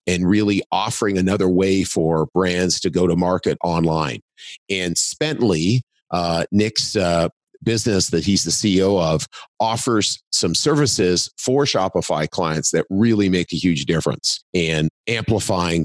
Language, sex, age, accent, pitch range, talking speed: English, male, 40-59, American, 85-100 Hz, 140 wpm